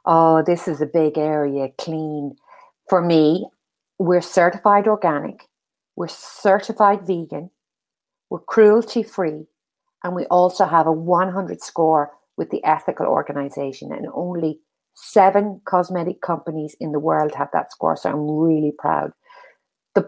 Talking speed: 130 wpm